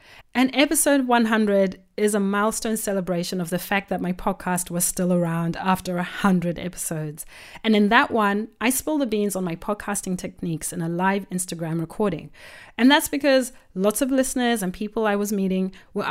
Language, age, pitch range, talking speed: English, 30-49, 185-240 Hz, 180 wpm